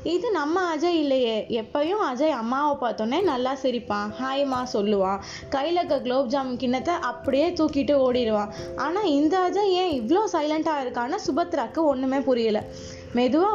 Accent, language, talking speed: Indian, English, 170 wpm